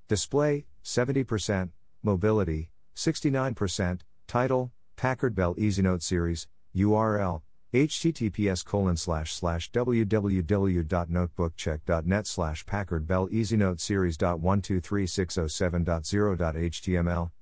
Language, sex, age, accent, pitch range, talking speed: English, male, 50-69, American, 85-105 Hz, 75 wpm